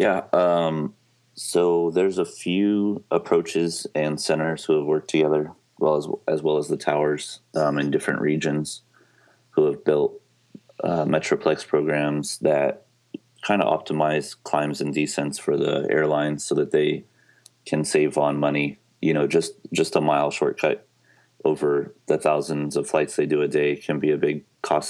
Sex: male